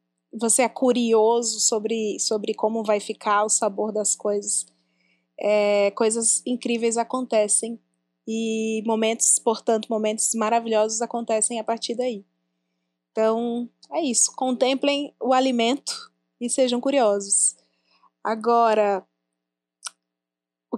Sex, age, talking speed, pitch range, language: female, 20-39, 105 wpm, 220-265 Hz, Portuguese